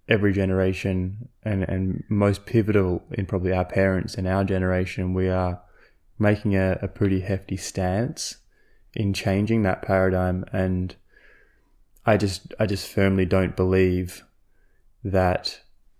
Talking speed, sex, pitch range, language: 130 wpm, male, 95-100 Hz, English